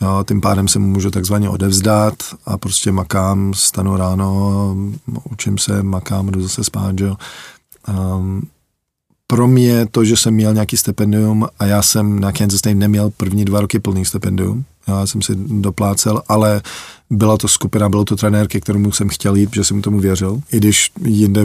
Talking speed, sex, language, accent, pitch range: 175 wpm, male, Czech, native, 100-105 Hz